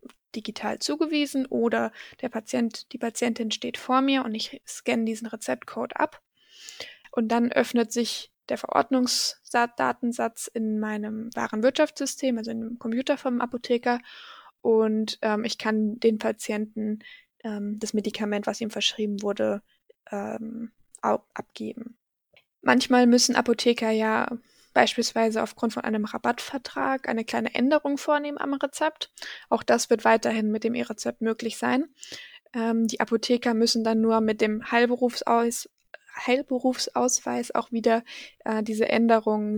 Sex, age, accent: female, 20-39, German